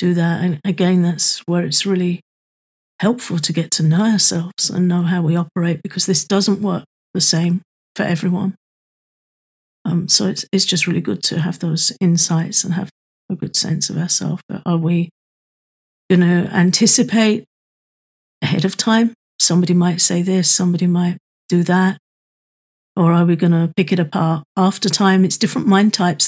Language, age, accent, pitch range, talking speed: English, 50-69, British, 175-200 Hz, 170 wpm